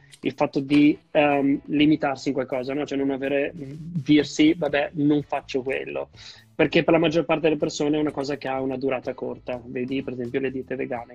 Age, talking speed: 20-39, 200 wpm